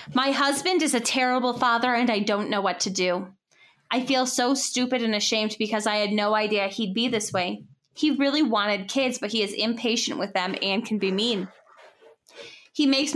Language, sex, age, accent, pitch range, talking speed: English, female, 20-39, American, 215-280 Hz, 200 wpm